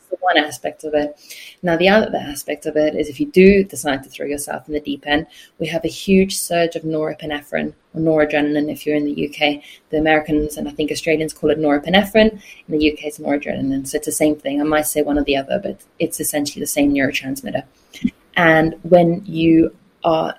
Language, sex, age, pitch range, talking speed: English, female, 20-39, 150-190 Hz, 210 wpm